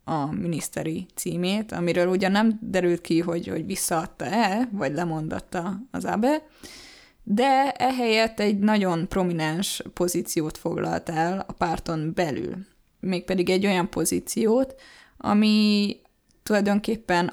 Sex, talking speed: female, 110 wpm